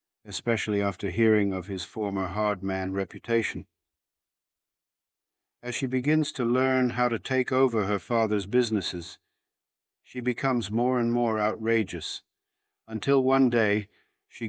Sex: male